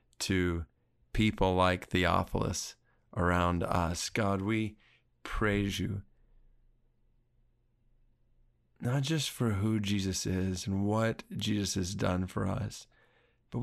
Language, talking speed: English, 105 wpm